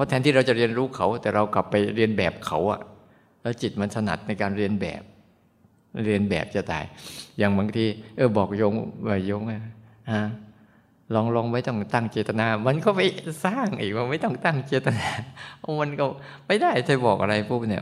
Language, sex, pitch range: Thai, male, 100-120 Hz